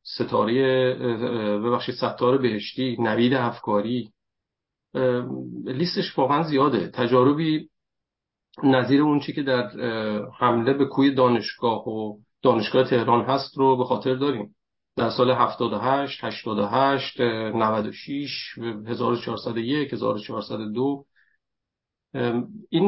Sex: male